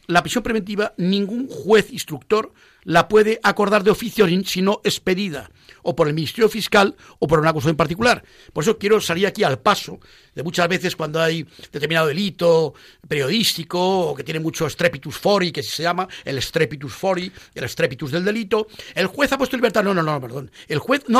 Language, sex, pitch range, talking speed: Spanish, male, 165-215 Hz, 200 wpm